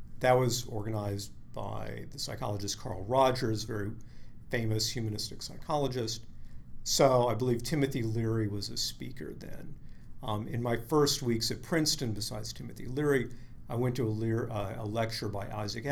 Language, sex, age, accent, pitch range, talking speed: English, male, 50-69, American, 110-130 Hz, 155 wpm